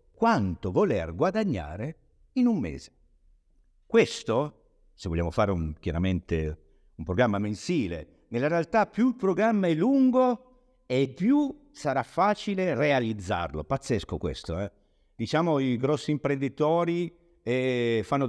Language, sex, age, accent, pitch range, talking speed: Italian, male, 50-69, native, 90-130 Hz, 120 wpm